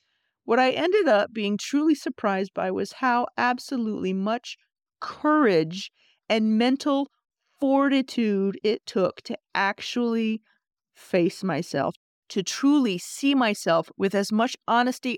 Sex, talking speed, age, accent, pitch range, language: female, 120 wpm, 40-59, American, 195-245 Hz, English